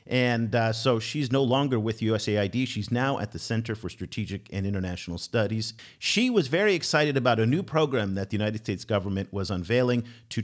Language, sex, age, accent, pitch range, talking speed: English, male, 50-69, American, 105-135 Hz, 195 wpm